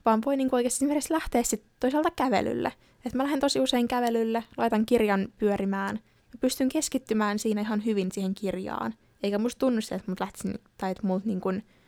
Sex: female